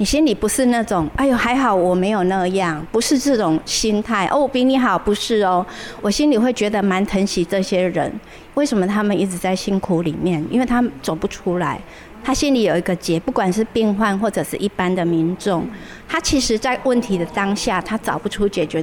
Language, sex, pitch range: Chinese, female, 185-245 Hz